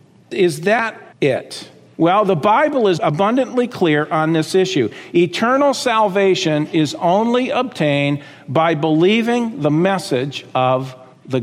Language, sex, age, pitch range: English, male, 50-69, 150-235 Hz